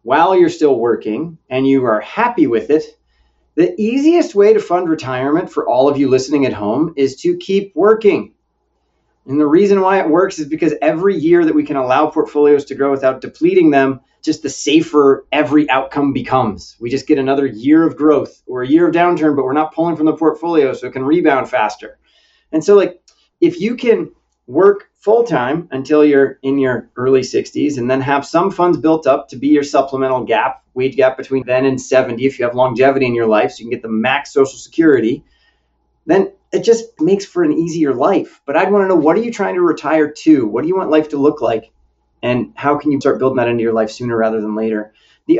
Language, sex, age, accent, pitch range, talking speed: English, male, 30-49, American, 130-200 Hz, 220 wpm